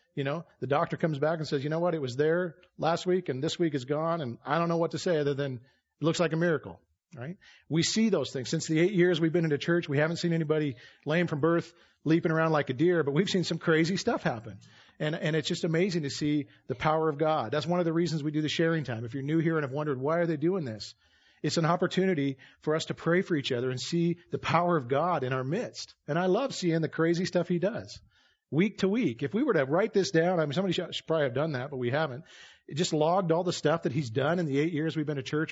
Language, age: English, 40-59